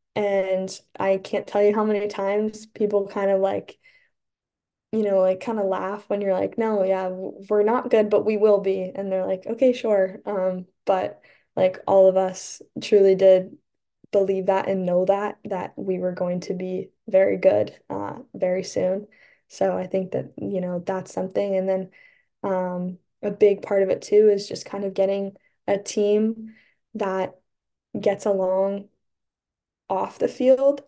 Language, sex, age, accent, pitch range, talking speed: English, female, 10-29, American, 190-205 Hz, 175 wpm